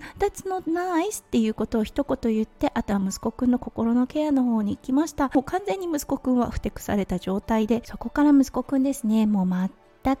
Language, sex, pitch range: Japanese, female, 215-290 Hz